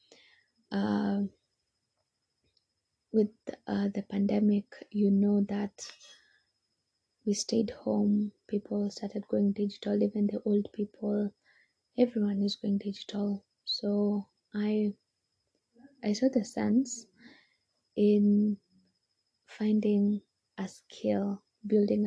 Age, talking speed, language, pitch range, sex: 20-39, 90 wpm, English, 200-230 Hz, female